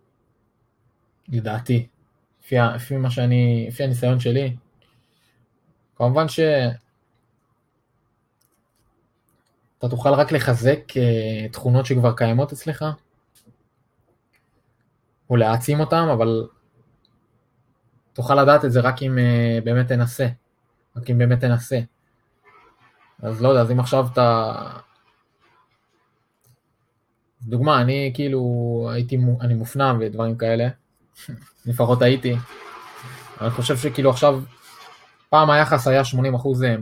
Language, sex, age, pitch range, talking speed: Hebrew, male, 20-39, 115-135 Hz, 90 wpm